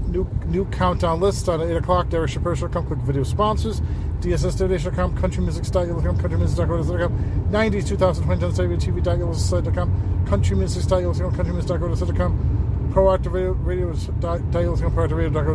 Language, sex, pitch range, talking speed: English, male, 85-100 Hz, 75 wpm